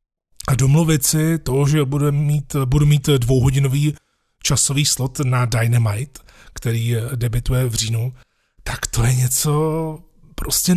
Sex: male